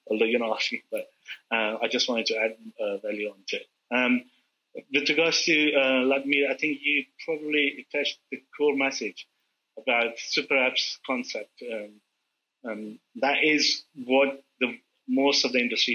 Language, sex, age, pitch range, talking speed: English, male, 30-49, 120-145 Hz, 165 wpm